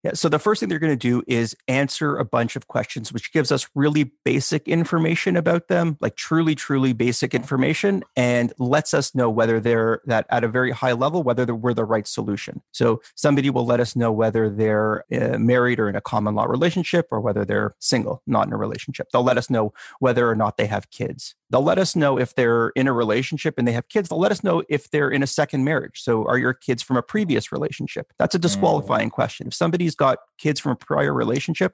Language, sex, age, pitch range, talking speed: English, male, 30-49, 115-150 Hz, 230 wpm